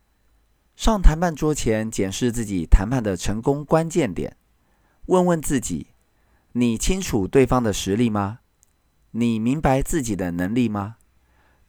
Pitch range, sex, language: 90-140 Hz, male, Chinese